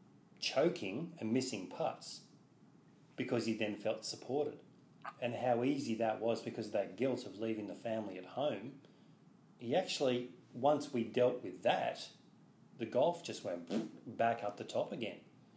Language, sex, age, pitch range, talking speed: English, male, 40-59, 105-125 Hz, 155 wpm